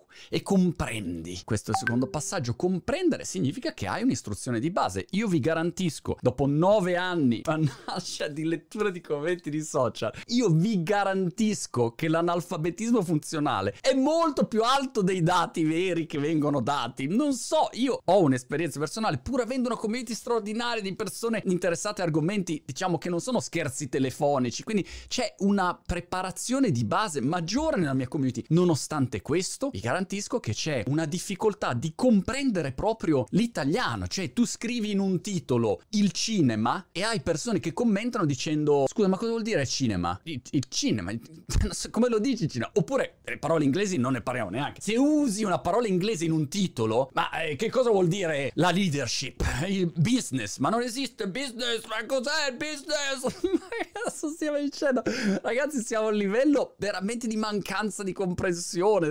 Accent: native